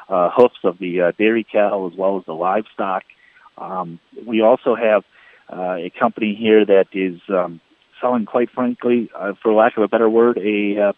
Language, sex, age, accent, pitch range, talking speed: English, male, 40-59, American, 90-110 Hz, 190 wpm